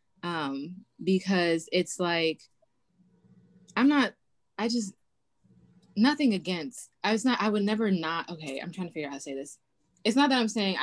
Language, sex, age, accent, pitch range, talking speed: English, female, 20-39, American, 155-185 Hz, 175 wpm